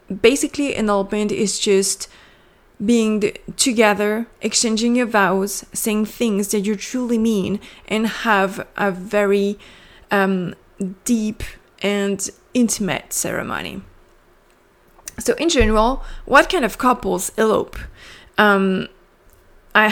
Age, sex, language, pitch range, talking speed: 20-39, female, English, 195-225 Hz, 100 wpm